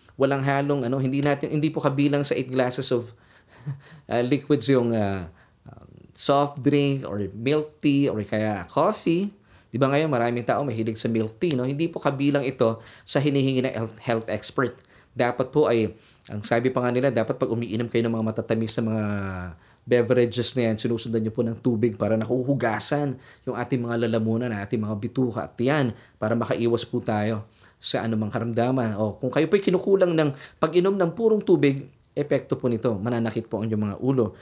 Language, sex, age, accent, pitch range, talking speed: Filipino, male, 20-39, native, 115-145 Hz, 190 wpm